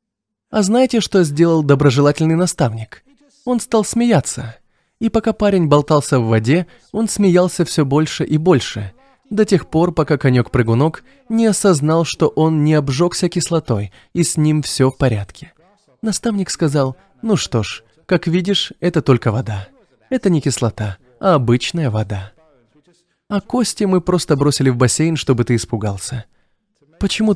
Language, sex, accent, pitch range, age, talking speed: Russian, male, native, 115-170 Hz, 20-39, 145 wpm